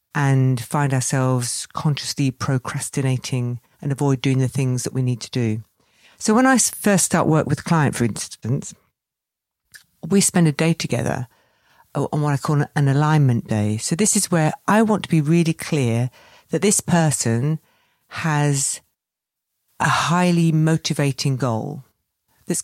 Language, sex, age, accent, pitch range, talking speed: English, female, 50-69, British, 130-170 Hz, 150 wpm